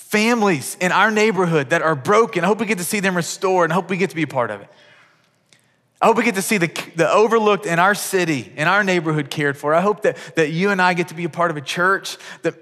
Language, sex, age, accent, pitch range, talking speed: English, male, 30-49, American, 135-175 Hz, 275 wpm